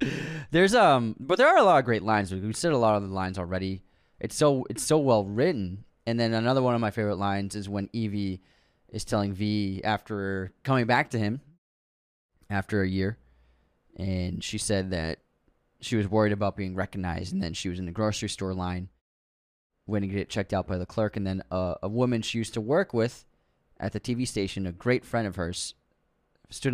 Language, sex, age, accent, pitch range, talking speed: English, male, 20-39, American, 95-115 Hz, 210 wpm